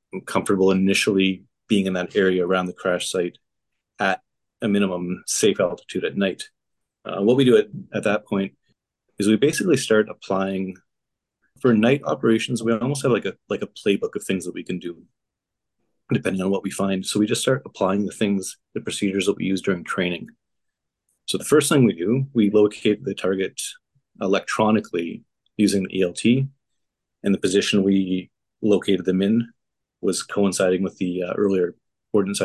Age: 30-49